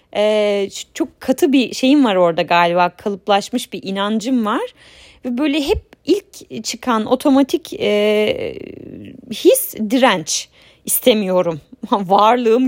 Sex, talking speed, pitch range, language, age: female, 110 wpm, 185-270 Hz, Turkish, 30-49